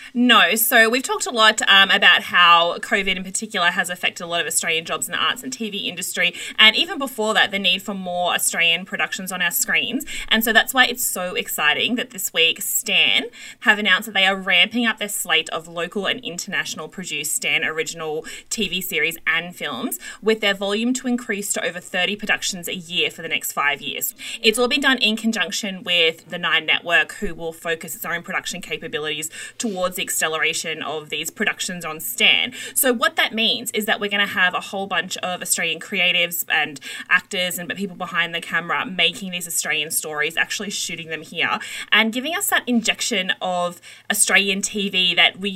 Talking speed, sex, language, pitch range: 200 wpm, female, English, 170-225 Hz